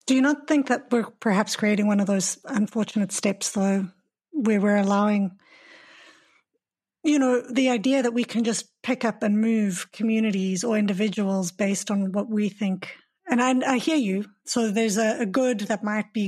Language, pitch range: English, 200-235 Hz